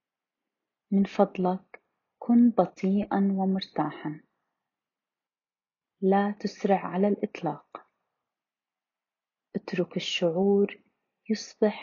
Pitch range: 180-215 Hz